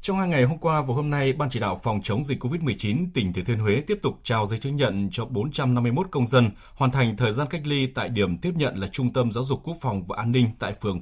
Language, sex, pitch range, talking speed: Vietnamese, male, 105-140 Hz, 280 wpm